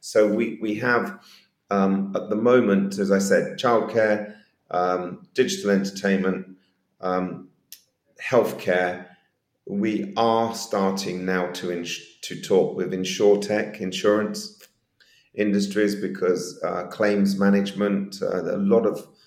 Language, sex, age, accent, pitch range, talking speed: English, male, 40-59, British, 95-100 Hz, 120 wpm